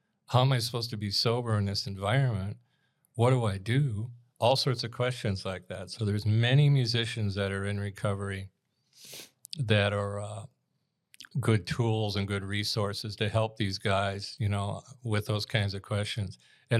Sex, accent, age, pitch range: male, American, 50-69, 105-125 Hz